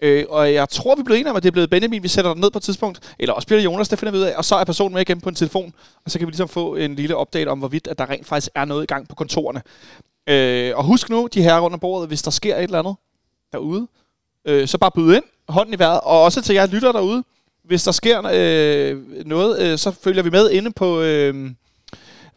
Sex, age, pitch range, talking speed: male, 30-49, 140-185 Hz, 280 wpm